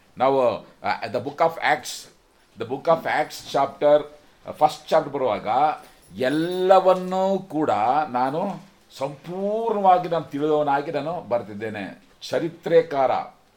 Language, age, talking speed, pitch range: Kannada, 50-69, 110 wpm, 135-180 Hz